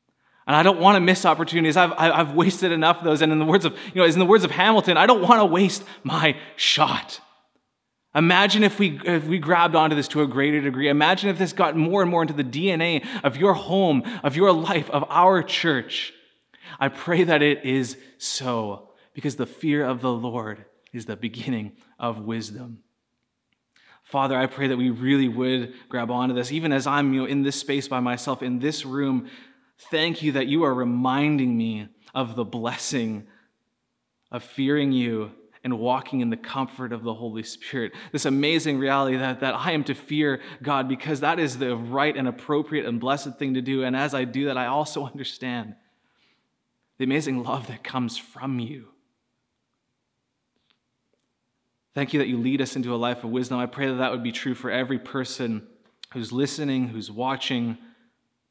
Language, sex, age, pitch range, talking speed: English, male, 20-39, 125-160 Hz, 190 wpm